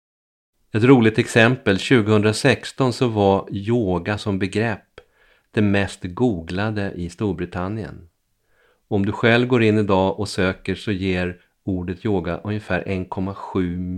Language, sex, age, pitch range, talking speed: Swedish, male, 40-59, 90-110 Hz, 120 wpm